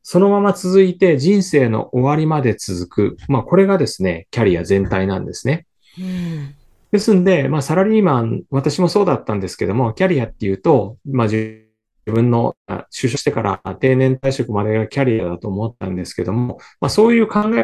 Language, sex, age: Japanese, male, 30-49